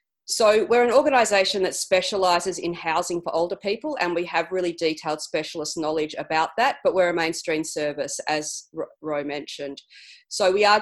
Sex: female